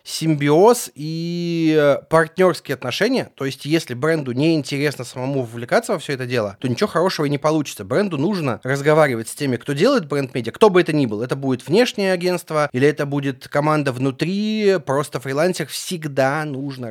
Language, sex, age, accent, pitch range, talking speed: Russian, male, 30-49, native, 130-175 Hz, 170 wpm